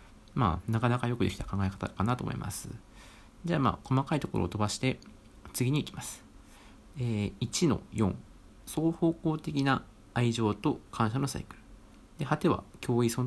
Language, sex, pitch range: Japanese, male, 110-155 Hz